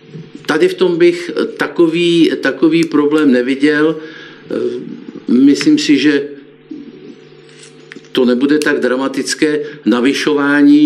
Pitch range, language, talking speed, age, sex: 130-165 Hz, Czech, 90 wpm, 50-69, male